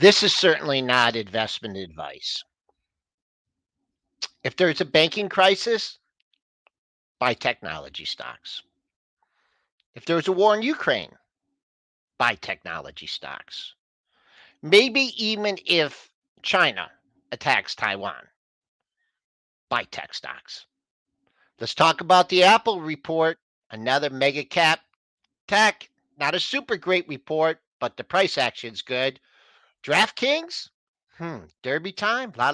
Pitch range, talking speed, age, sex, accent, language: 150-240 Hz, 105 wpm, 50-69, male, American, English